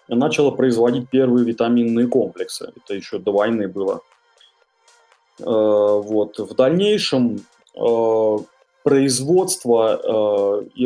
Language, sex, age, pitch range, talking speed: Russian, male, 20-39, 115-160 Hz, 100 wpm